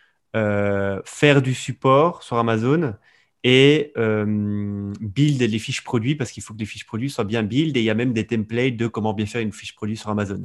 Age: 20-39